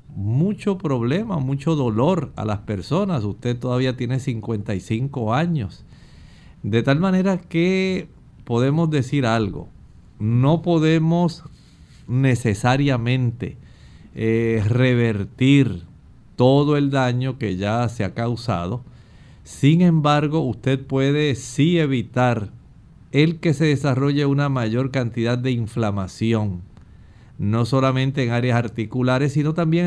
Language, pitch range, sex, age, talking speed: Spanish, 115-145 Hz, male, 50-69, 110 wpm